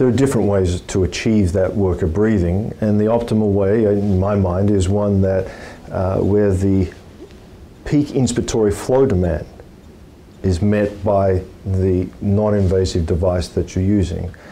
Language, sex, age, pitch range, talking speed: English, male, 50-69, 90-105 Hz, 150 wpm